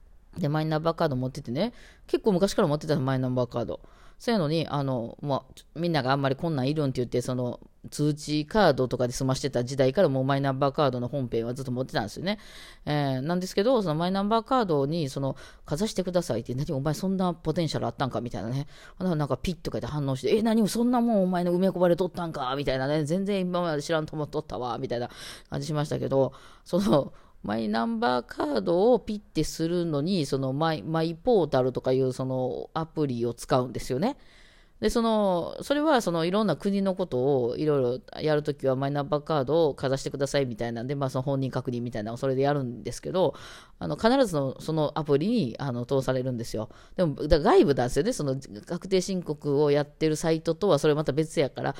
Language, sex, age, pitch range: Japanese, female, 20-39, 130-175 Hz